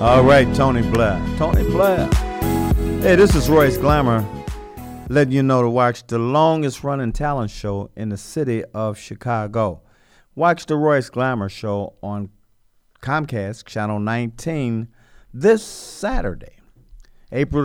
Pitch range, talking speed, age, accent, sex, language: 105-140 Hz, 125 wpm, 50-69, American, male, English